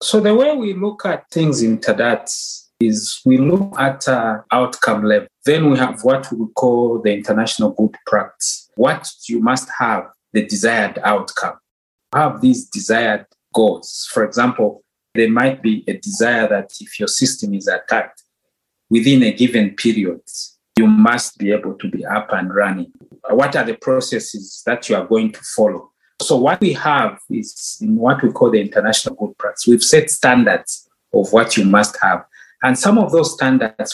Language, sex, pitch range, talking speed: English, male, 110-145 Hz, 175 wpm